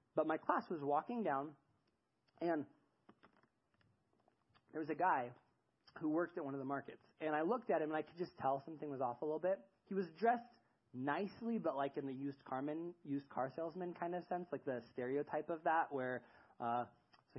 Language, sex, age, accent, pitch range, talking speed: English, male, 20-39, American, 130-170 Hz, 200 wpm